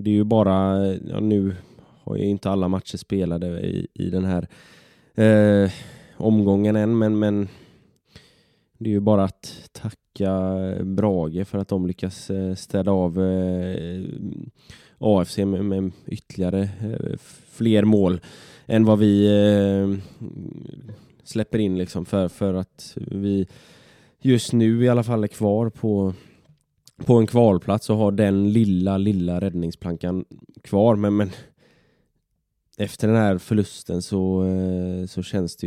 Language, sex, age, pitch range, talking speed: Swedish, male, 20-39, 90-105 Hz, 125 wpm